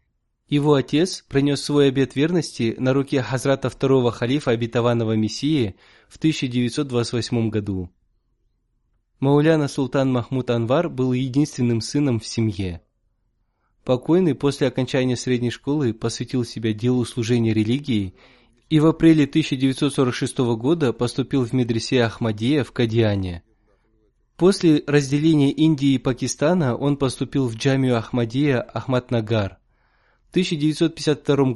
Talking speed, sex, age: 110 wpm, male, 20-39